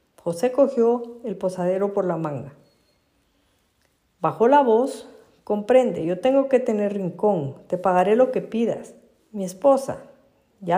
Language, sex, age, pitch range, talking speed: Spanish, female, 50-69, 185-250 Hz, 135 wpm